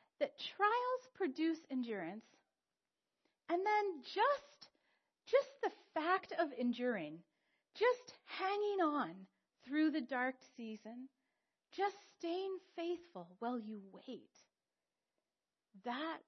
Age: 40-59